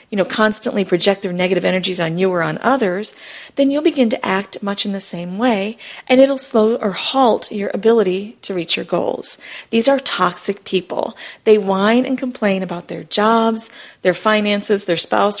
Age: 40-59